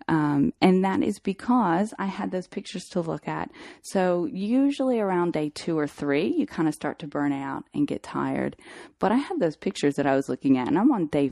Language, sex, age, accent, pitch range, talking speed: English, female, 30-49, American, 145-210 Hz, 230 wpm